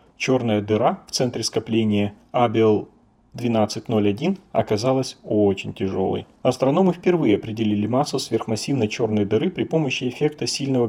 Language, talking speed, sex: Russian, 115 wpm, male